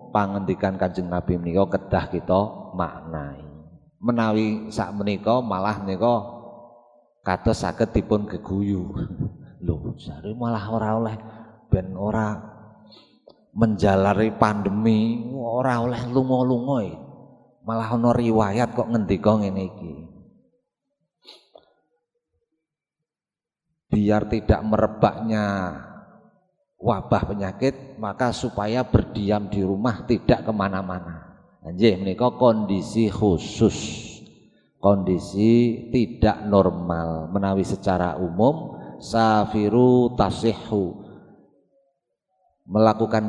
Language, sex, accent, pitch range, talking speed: Indonesian, male, native, 100-120 Hz, 85 wpm